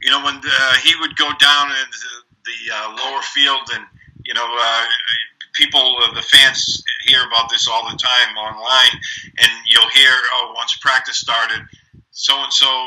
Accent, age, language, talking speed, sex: American, 50-69, English, 170 wpm, male